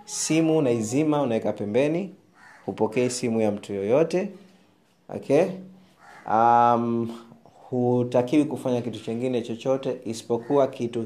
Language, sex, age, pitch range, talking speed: Swahili, male, 30-49, 105-135 Hz, 105 wpm